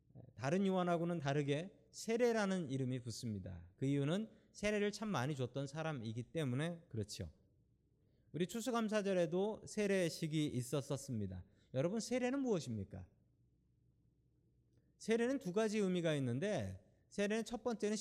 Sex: male